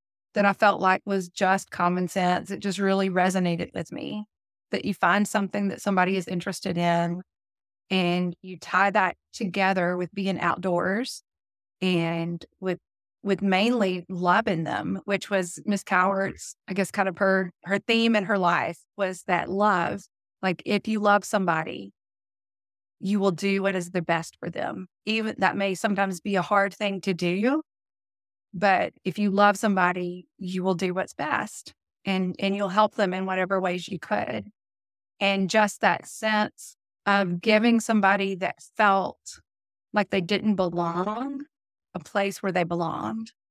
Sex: female